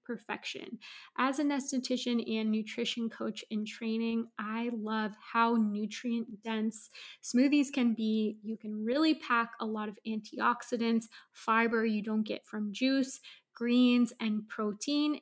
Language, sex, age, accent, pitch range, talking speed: English, female, 20-39, American, 215-240 Hz, 135 wpm